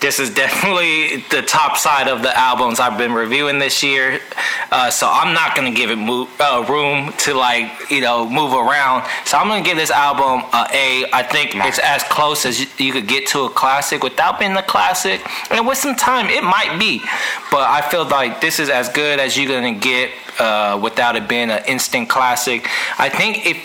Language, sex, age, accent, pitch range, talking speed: English, male, 20-39, American, 125-150 Hz, 210 wpm